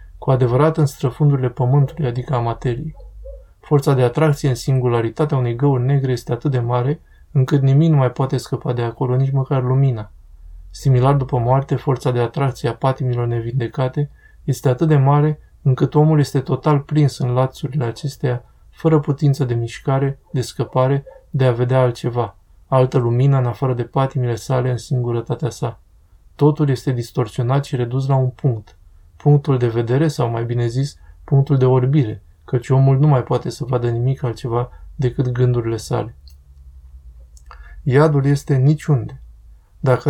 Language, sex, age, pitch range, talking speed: Romanian, male, 20-39, 120-145 Hz, 160 wpm